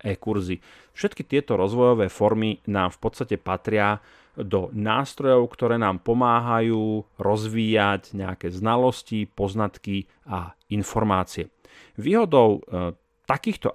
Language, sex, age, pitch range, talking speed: Slovak, male, 40-59, 95-115 Hz, 95 wpm